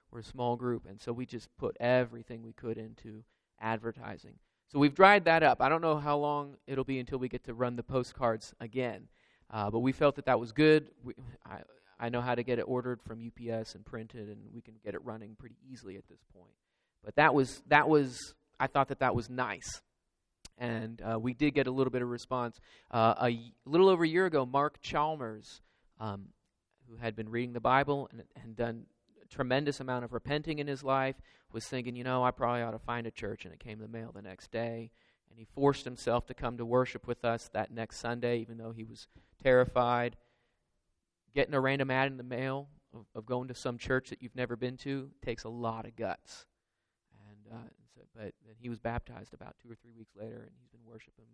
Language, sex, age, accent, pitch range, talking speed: English, male, 30-49, American, 115-130 Hz, 225 wpm